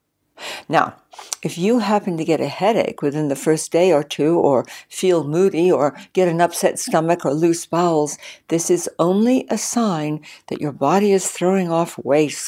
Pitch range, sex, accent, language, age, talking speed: 150-200 Hz, female, American, English, 60-79, 180 wpm